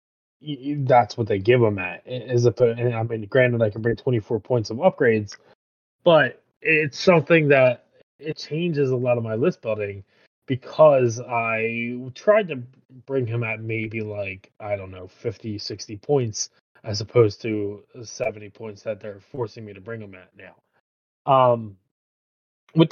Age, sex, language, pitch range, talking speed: 20-39, male, English, 105-130 Hz, 150 wpm